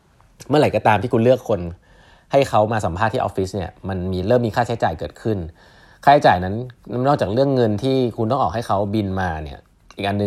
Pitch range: 95-130 Hz